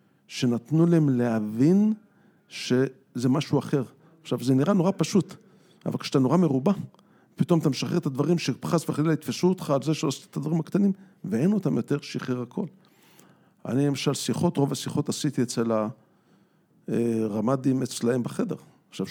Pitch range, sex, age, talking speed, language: 125-165 Hz, male, 50-69, 150 wpm, Hebrew